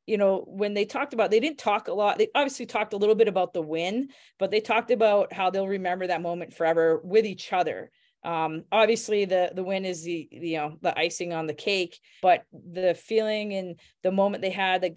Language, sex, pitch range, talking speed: English, female, 170-205 Hz, 230 wpm